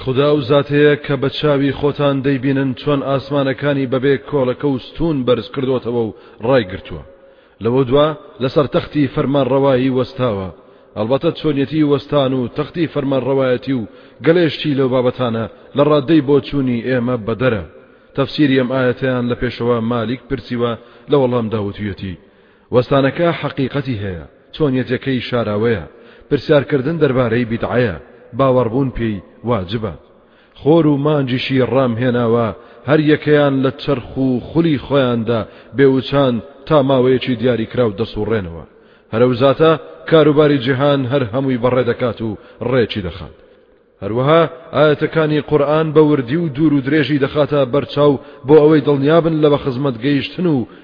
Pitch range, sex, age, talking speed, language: 120-145 Hz, male, 30-49, 130 wpm, English